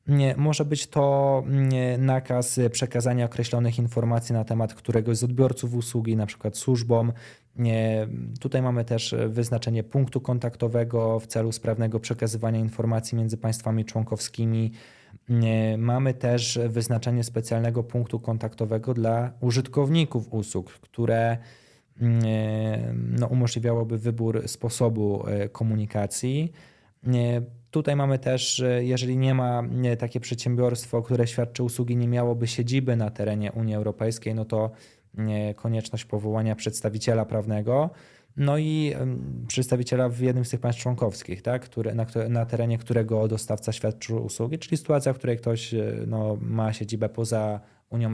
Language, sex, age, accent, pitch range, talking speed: Polish, male, 20-39, native, 110-125 Hz, 125 wpm